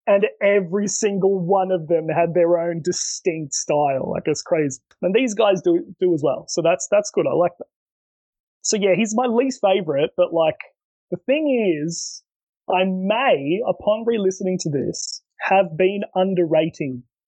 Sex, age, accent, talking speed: male, 20-39, Australian, 165 wpm